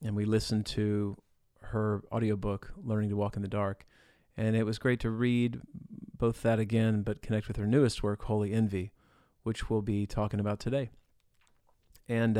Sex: male